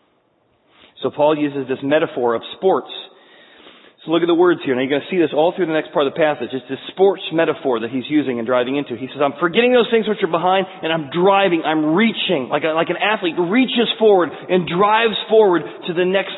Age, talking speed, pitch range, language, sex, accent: 40-59, 230 wpm, 145-205 Hz, English, male, American